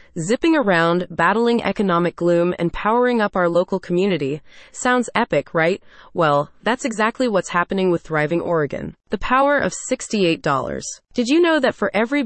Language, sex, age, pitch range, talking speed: English, female, 30-49, 170-230 Hz, 155 wpm